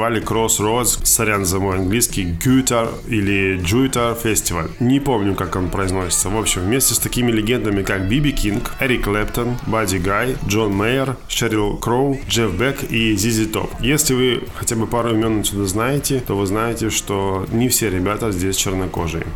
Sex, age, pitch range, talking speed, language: male, 20-39, 95-115 Hz, 165 wpm, Russian